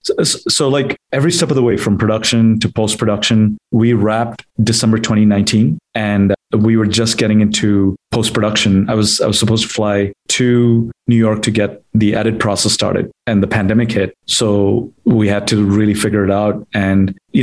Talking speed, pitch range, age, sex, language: 195 wpm, 100-115 Hz, 30-49, male, English